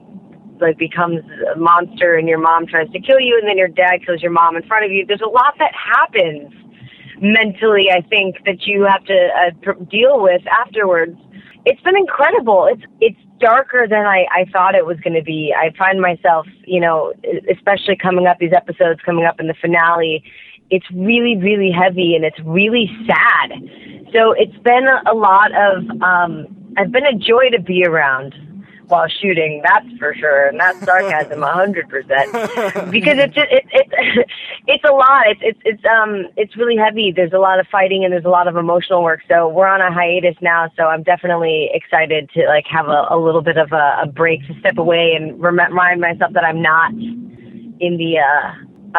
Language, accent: English, American